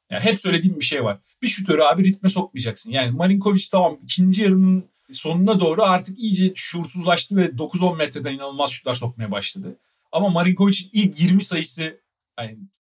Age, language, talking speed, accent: 40-59, Turkish, 160 wpm, native